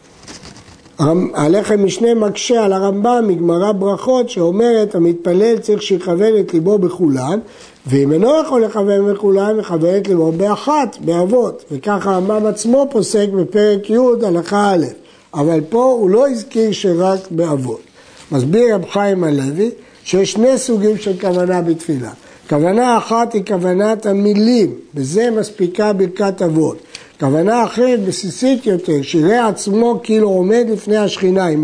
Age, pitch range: 60-79, 165-215 Hz